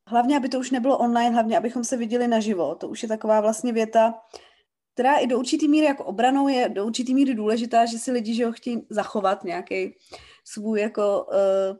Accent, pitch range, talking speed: native, 230-255 Hz, 200 wpm